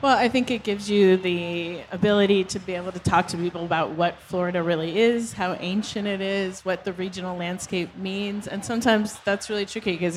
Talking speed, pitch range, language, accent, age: 205 wpm, 175-215 Hz, English, American, 30-49